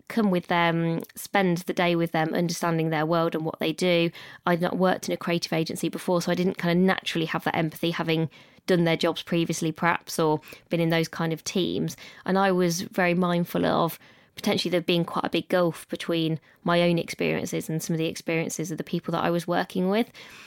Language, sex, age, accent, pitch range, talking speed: English, female, 20-39, British, 165-185 Hz, 220 wpm